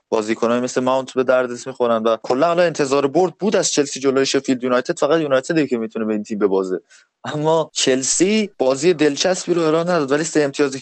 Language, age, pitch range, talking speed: Persian, 20-39, 120-150 Hz, 195 wpm